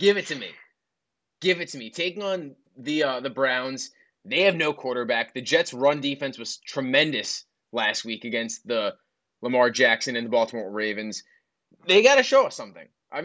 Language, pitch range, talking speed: English, 125-165 Hz, 185 wpm